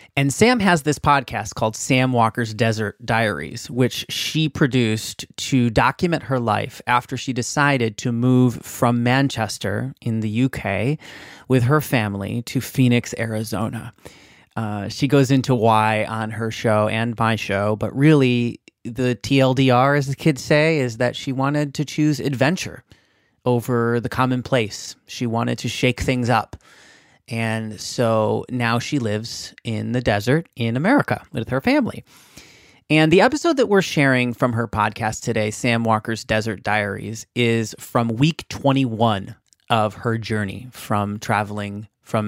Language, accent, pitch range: English, American, 110-135 Hz